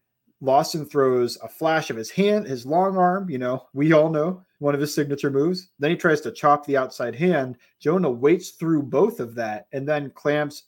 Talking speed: 210 wpm